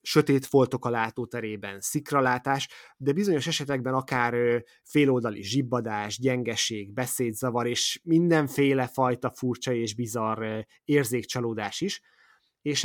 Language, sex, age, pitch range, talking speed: Hungarian, male, 20-39, 120-140 Hz, 105 wpm